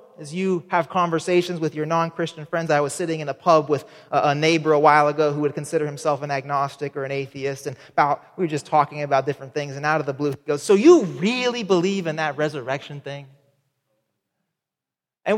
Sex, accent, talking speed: male, American, 210 wpm